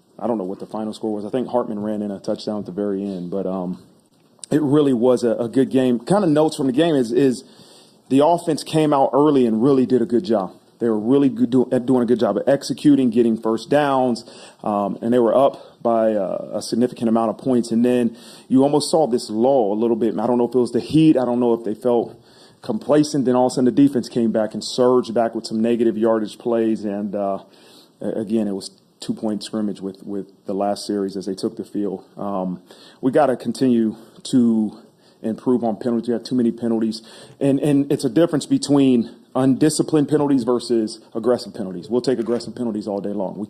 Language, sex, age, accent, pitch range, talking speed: English, male, 30-49, American, 110-125 Hz, 225 wpm